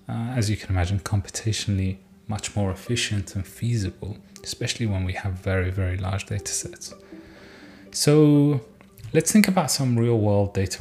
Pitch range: 95-110 Hz